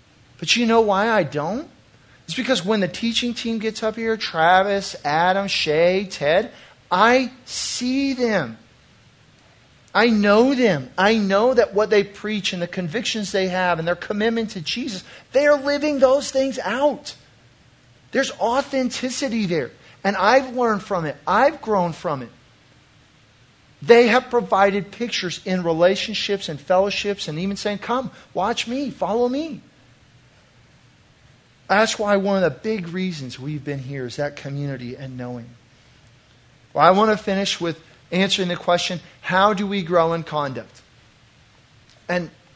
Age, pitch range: 40-59, 140-210 Hz